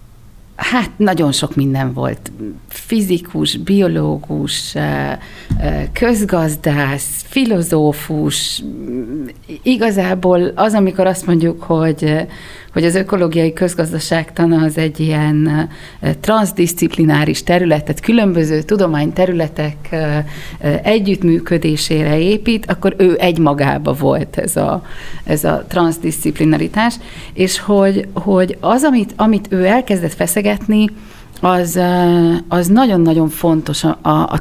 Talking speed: 95 wpm